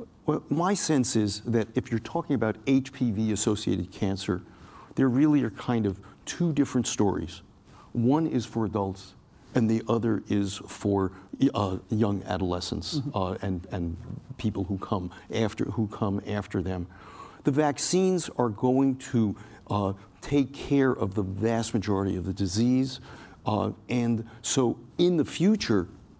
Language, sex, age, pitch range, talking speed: English, male, 50-69, 105-130 Hz, 145 wpm